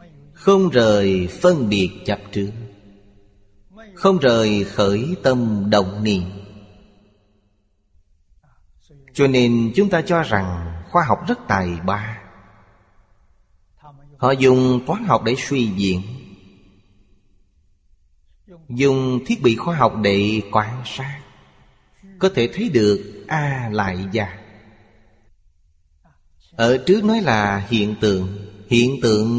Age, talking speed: 30-49, 110 wpm